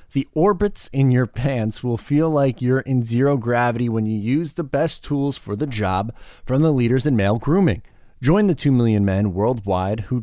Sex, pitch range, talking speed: male, 95-130 Hz, 200 wpm